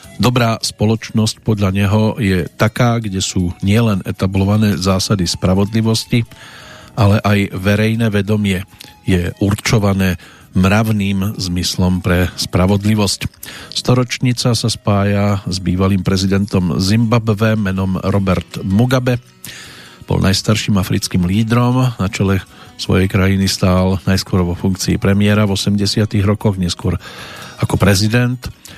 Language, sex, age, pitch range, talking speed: Slovak, male, 50-69, 95-115 Hz, 105 wpm